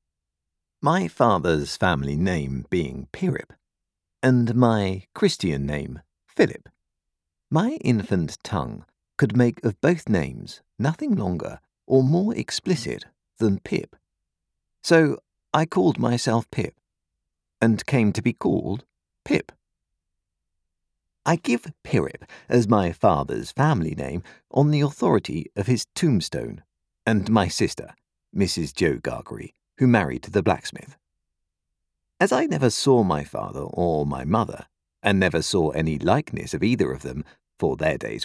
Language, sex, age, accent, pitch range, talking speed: English, male, 50-69, British, 80-120 Hz, 130 wpm